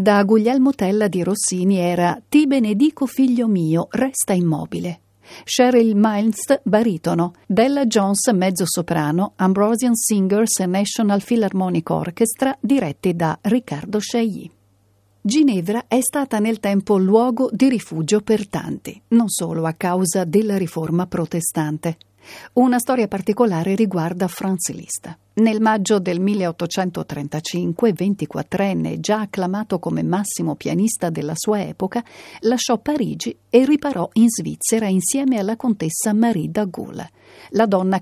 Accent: native